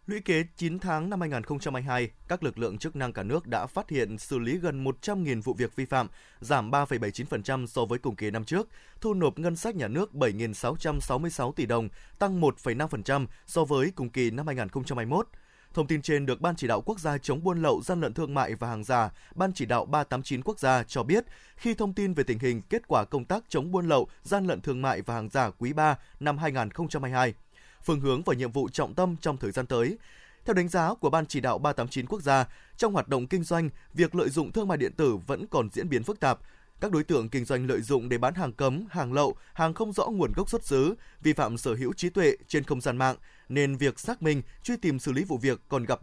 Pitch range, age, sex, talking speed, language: 125-170 Hz, 20-39, male, 240 wpm, Vietnamese